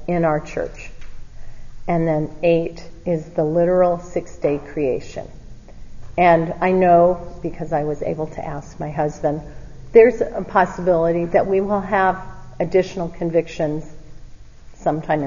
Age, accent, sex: 40-59, American, female